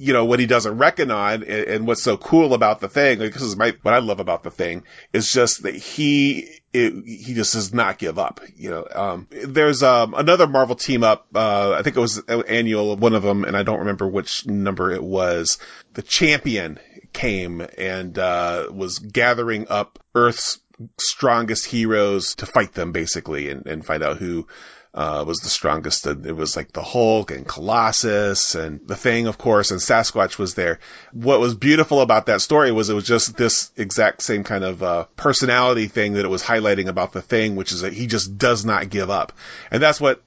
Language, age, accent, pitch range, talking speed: English, 30-49, American, 95-120 Hz, 205 wpm